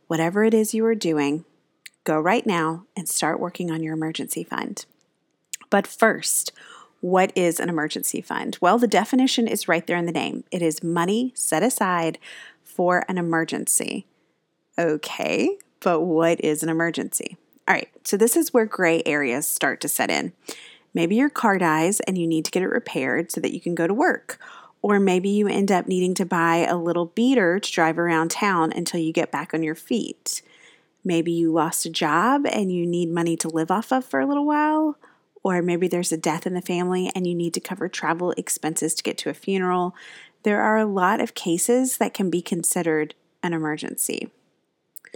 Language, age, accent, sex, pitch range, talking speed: English, 30-49, American, female, 165-215 Hz, 195 wpm